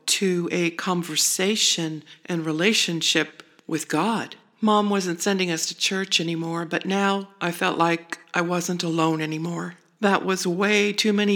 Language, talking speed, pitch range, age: English, 150 wpm, 175-205 Hz, 40-59